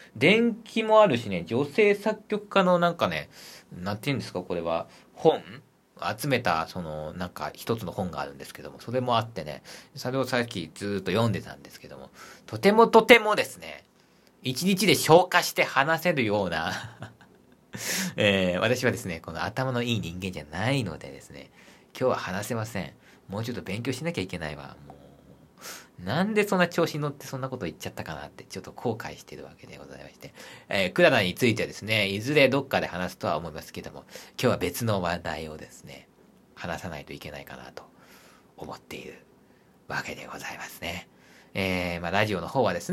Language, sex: Japanese, male